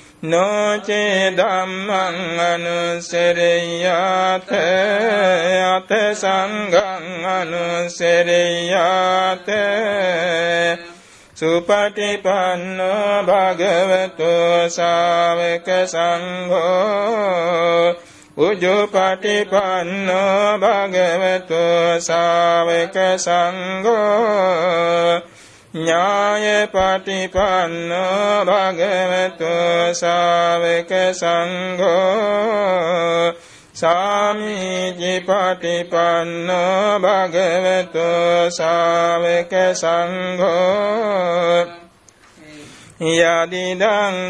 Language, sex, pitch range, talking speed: Vietnamese, male, 170-190 Hz, 40 wpm